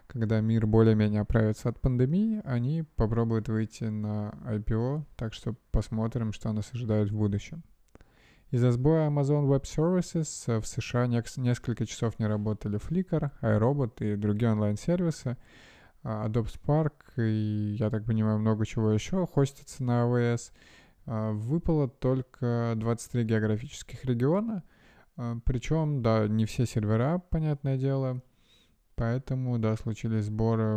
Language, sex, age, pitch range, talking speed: Russian, male, 20-39, 110-135 Hz, 125 wpm